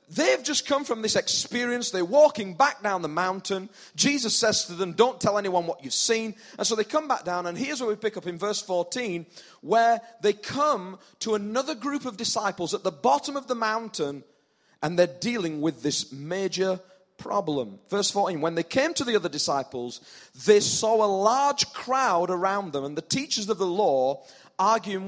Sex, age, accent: male, 30-49, British